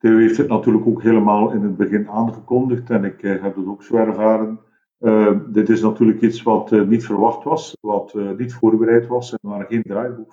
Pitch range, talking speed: 100-120 Hz, 210 wpm